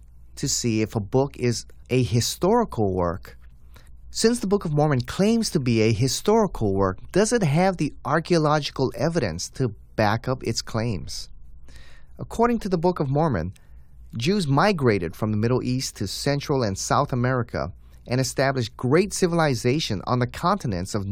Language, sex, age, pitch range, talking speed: English, male, 30-49, 95-150 Hz, 160 wpm